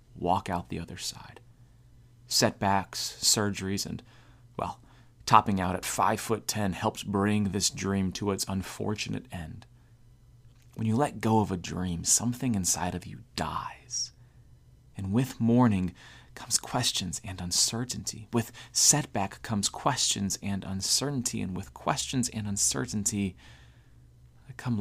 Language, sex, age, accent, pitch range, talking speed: English, male, 30-49, American, 95-120 Hz, 130 wpm